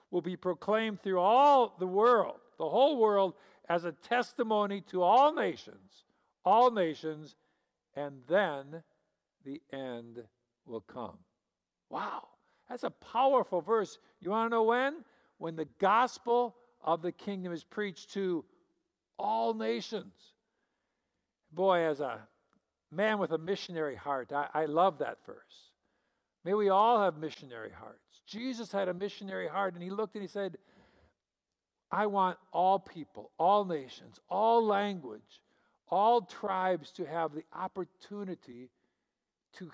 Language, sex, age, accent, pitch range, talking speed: English, male, 60-79, American, 165-210 Hz, 135 wpm